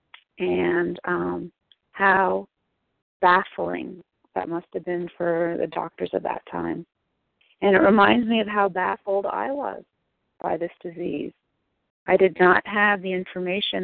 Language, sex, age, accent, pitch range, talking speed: English, female, 40-59, American, 170-195 Hz, 140 wpm